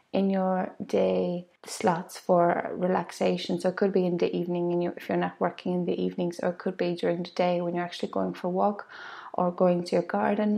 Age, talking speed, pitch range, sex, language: 20-39, 235 wpm, 175-185 Hz, female, English